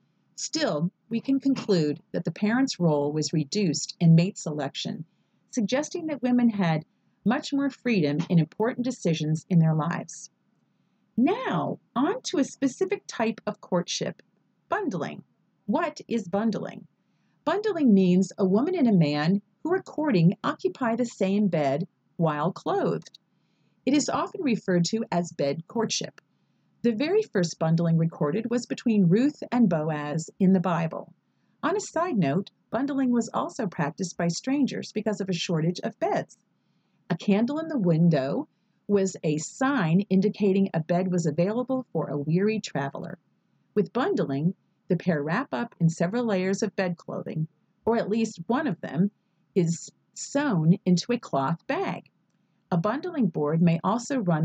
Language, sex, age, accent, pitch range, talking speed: English, female, 40-59, American, 170-235 Hz, 150 wpm